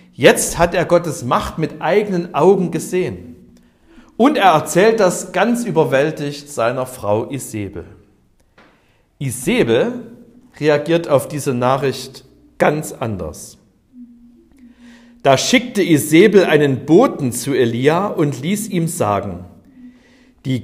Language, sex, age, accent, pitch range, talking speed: German, male, 50-69, German, 120-180 Hz, 110 wpm